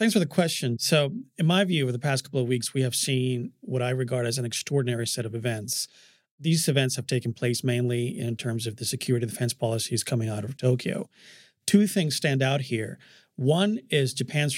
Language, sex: English, male